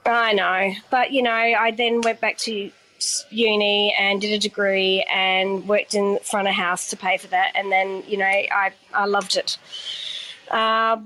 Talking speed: 185 wpm